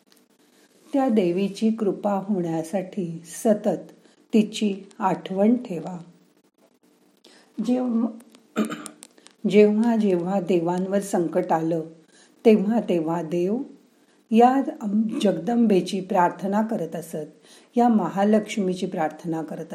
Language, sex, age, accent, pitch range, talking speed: Marathi, female, 50-69, native, 165-220 Hz, 75 wpm